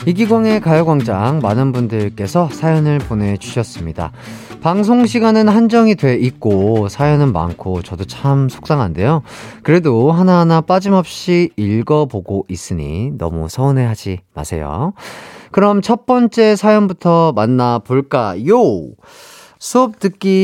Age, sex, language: 30-49, male, Korean